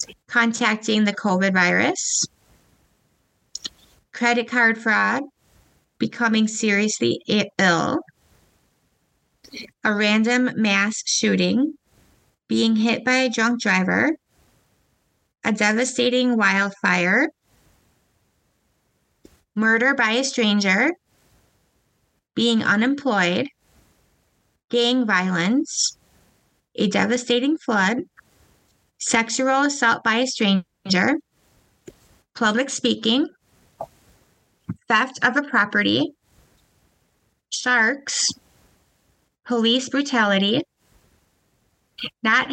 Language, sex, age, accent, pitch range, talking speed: English, female, 20-39, American, 210-255 Hz, 70 wpm